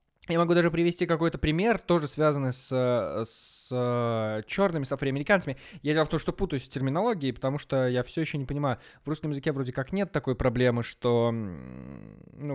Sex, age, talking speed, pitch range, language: male, 20-39, 180 wpm, 115-155 Hz, Russian